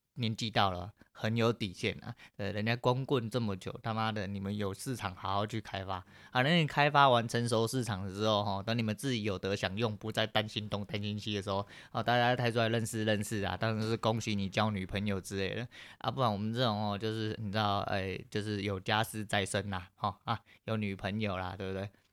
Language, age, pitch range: Chinese, 20-39, 100-120 Hz